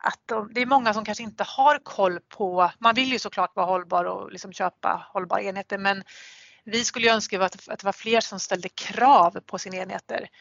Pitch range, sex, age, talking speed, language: 185-215 Hz, female, 30-49, 215 wpm, Swedish